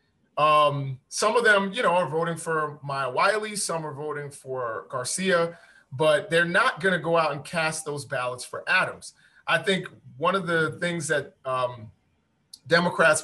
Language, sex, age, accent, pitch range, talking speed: English, male, 30-49, American, 140-165 Hz, 170 wpm